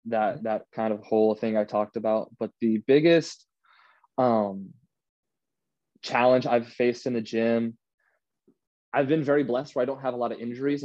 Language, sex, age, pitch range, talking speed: English, male, 20-39, 110-125 Hz, 170 wpm